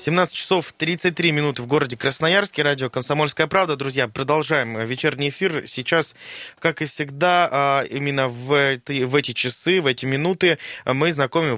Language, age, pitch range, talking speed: Russian, 20-39, 125-150 Hz, 150 wpm